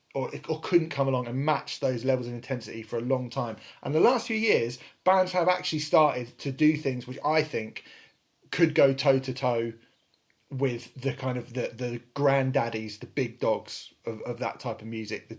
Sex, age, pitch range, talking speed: male, 30-49, 125-150 Hz, 205 wpm